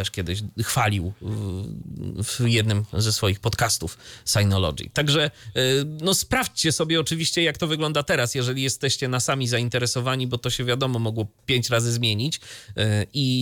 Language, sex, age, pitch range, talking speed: Polish, male, 30-49, 110-145 Hz, 145 wpm